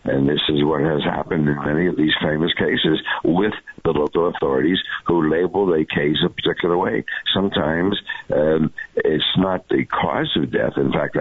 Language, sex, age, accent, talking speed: English, male, 60-79, American, 175 wpm